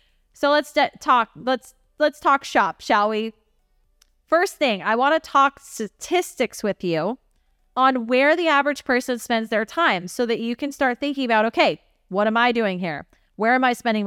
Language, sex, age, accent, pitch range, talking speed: English, female, 20-39, American, 215-270 Hz, 175 wpm